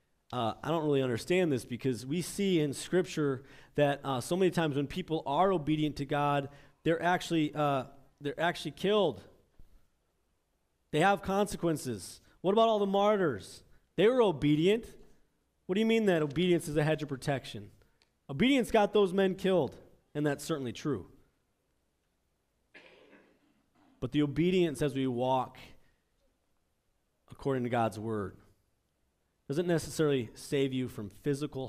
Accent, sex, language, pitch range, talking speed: American, male, English, 115-160 Hz, 140 wpm